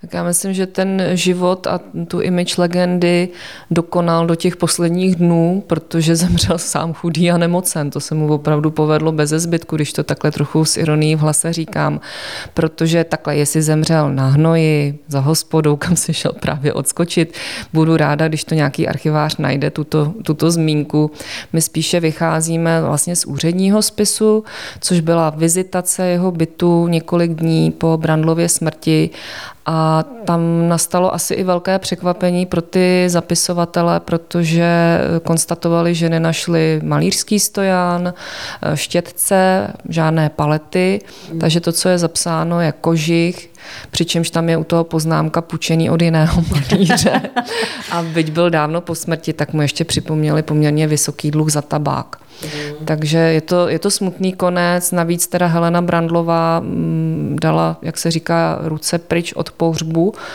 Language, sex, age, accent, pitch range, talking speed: Czech, female, 20-39, native, 155-175 Hz, 145 wpm